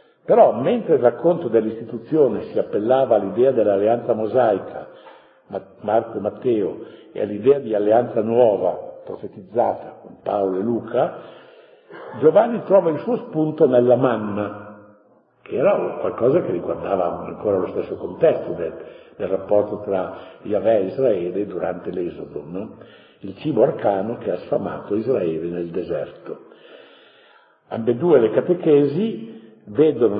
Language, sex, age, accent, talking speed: Italian, male, 60-79, native, 125 wpm